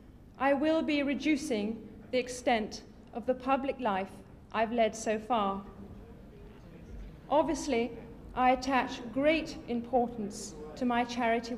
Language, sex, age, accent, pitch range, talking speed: English, female, 40-59, British, 220-280 Hz, 115 wpm